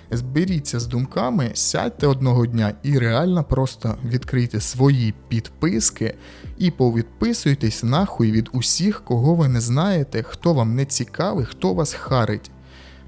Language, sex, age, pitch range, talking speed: Ukrainian, male, 20-39, 115-155 Hz, 130 wpm